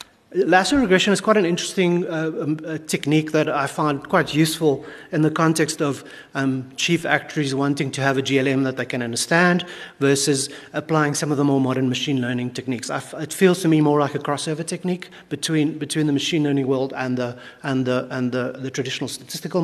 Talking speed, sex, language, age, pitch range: 200 wpm, male, English, 30-49, 135-170 Hz